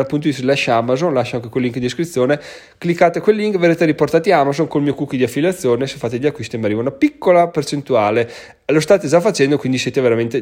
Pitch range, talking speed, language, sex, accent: 125-165 Hz, 215 wpm, Italian, male, native